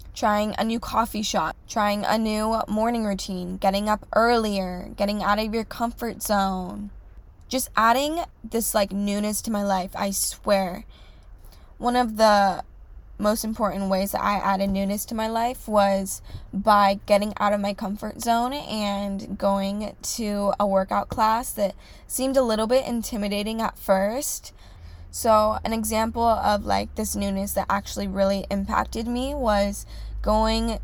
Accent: American